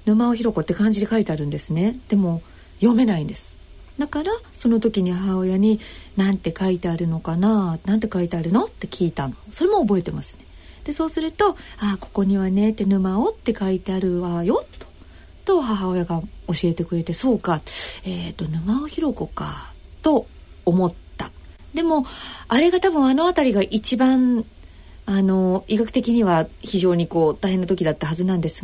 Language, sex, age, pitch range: Japanese, female, 40-59, 170-245 Hz